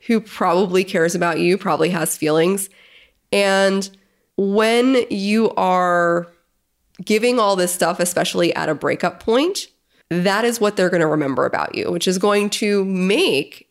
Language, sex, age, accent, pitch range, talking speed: English, female, 20-39, American, 170-215 Hz, 155 wpm